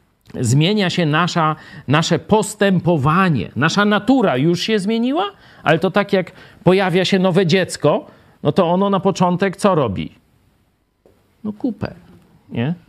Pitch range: 125-190 Hz